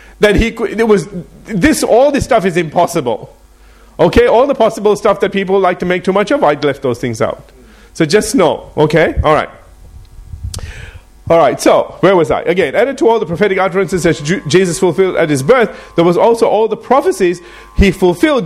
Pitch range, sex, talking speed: 145-205 Hz, male, 195 wpm